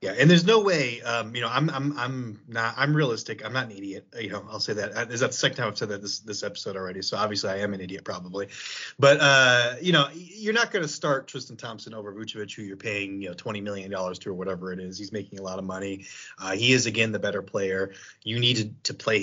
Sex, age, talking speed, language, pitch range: male, 30-49, 265 wpm, English, 100-135 Hz